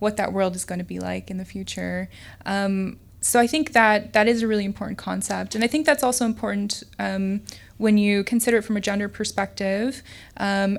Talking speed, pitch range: 210 wpm, 190-215 Hz